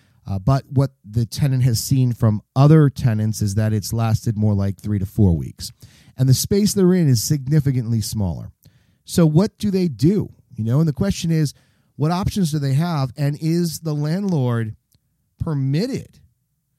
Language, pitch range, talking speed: English, 115-150 Hz, 175 wpm